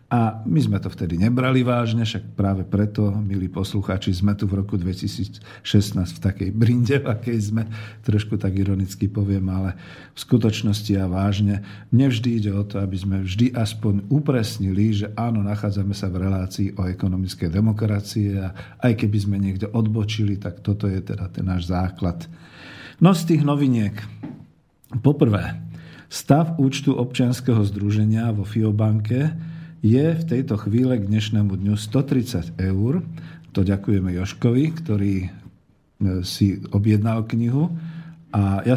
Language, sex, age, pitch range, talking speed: Slovak, male, 50-69, 95-120 Hz, 140 wpm